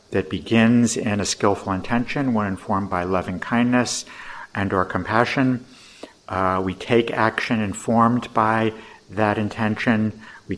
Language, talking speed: English, 125 wpm